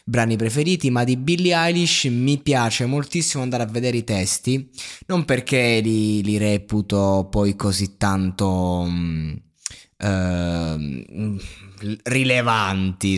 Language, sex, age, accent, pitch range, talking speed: Italian, male, 20-39, native, 110-140 Hz, 110 wpm